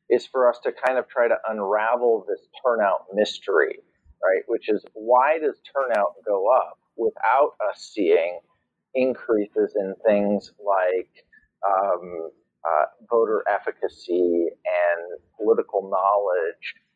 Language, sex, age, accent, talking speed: English, male, 40-59, American, 120 wpm